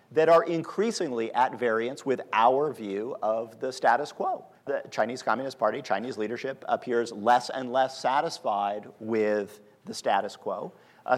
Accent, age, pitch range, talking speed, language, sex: American, 40-59, 110-130 Hz, 150 wpm, English, male